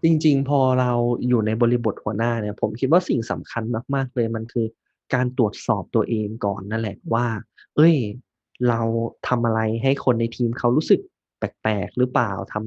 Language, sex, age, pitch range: Thai, male, 20-39, 110-130 Hz